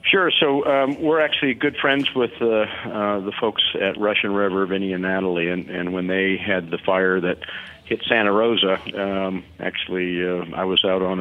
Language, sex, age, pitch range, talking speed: English, male, 50-69, 90-100 Hz, 200 wpm